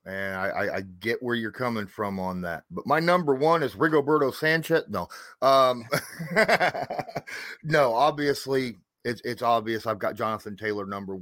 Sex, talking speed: male, 160 wpm